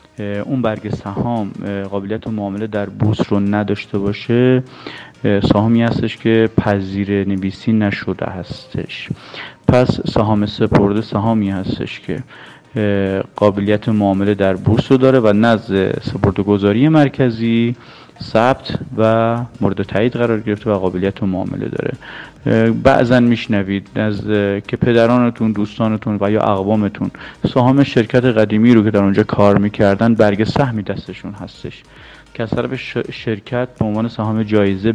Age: 30-49